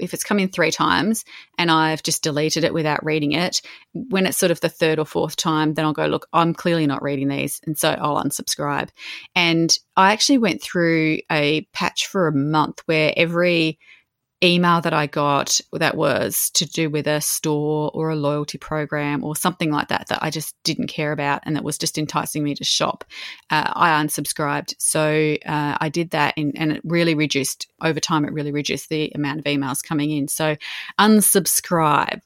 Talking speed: 195 wpm